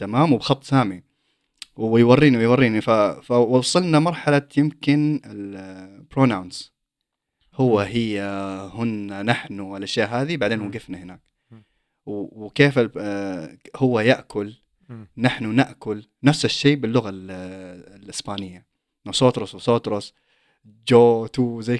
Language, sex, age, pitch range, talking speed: Arabic, male, 20-39, 105-140 Hz, 90 wpm